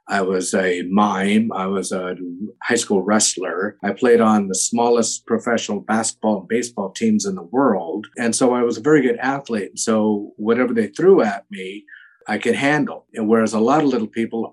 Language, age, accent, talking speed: English, 50-69, American, 190 wpm